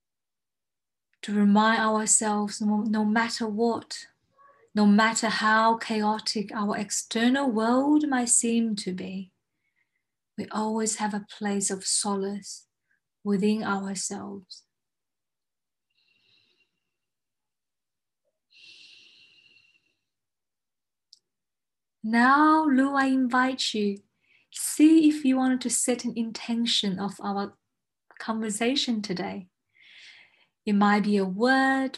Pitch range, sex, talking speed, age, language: 205-245 Hz, female, 90 wpm, 30-49, English